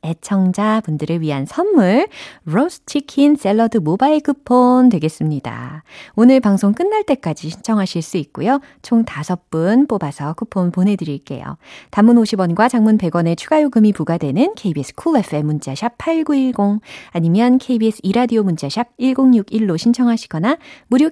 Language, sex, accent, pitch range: Korean, female, native, 160-245 Hz